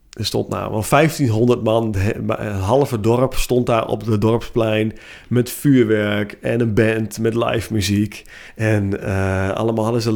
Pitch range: 105-120 Hz